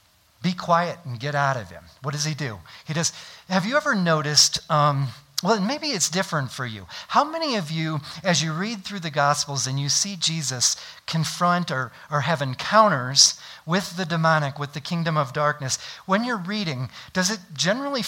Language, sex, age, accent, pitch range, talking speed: English, male, 40-59, American, 140-185 Hz, 190 wpm